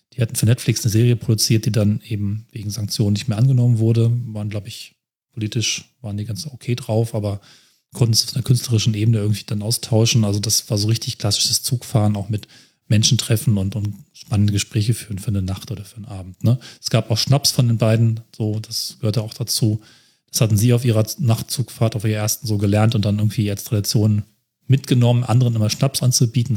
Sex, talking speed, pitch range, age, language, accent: male, 210 wpm, 110-130 Hz, 30-49, German, German